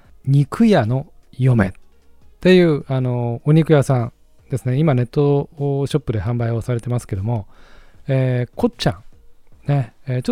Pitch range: 105-145 Hz